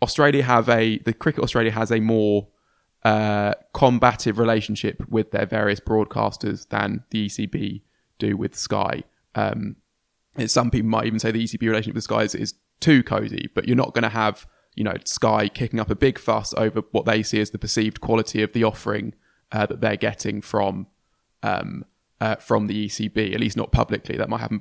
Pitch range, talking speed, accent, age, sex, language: 105-115 Hz, 195 wpm, British, 20-39, male, English